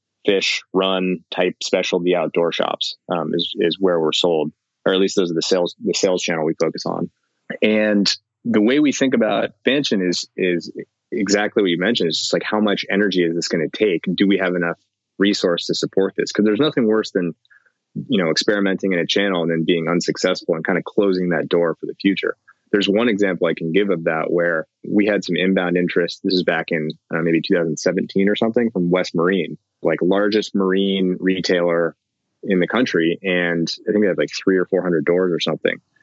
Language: English